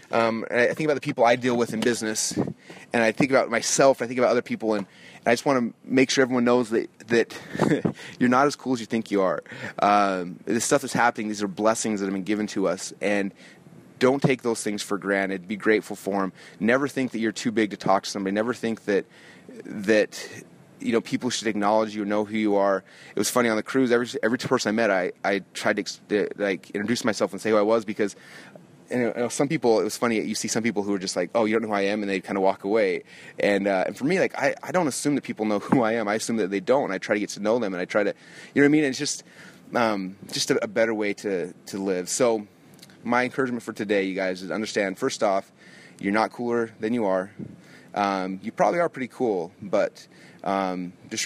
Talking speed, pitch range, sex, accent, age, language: 255 wpm, 100-120 Hz, male, American, 30-49, English